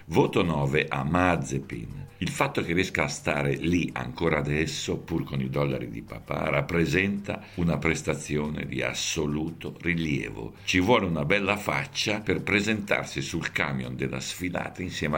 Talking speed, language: 145 wpm, Italian